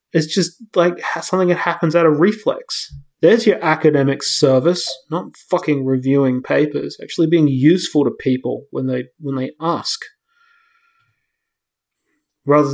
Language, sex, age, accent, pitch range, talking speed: English, male, 30-49, Australian, 135-180 Hz, 130 wpm